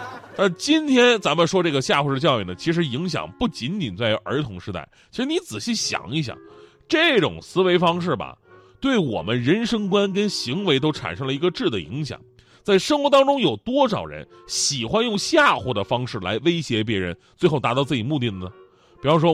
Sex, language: male, Chinese